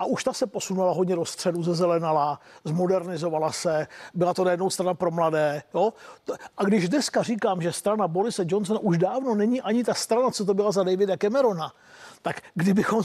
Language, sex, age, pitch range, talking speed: Czech, male, 50-69, 175-200 Hz, 185 wpm